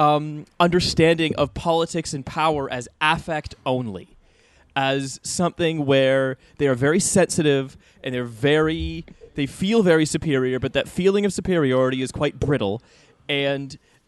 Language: English